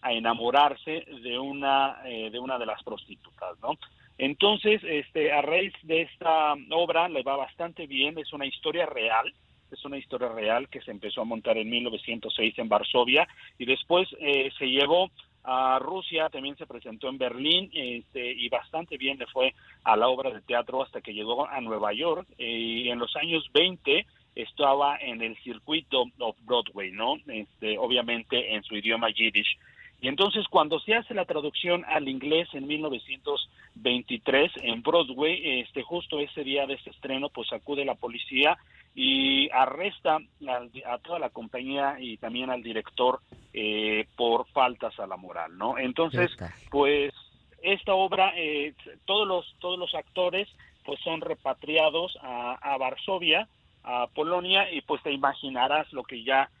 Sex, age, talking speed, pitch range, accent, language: male, 40-59, 160 wpm, 125-160 Hz, Mexican, Spanish